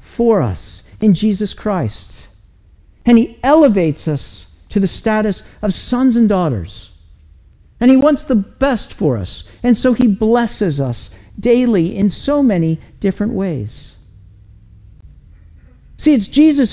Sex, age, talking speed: male, 50-69, 135 wpm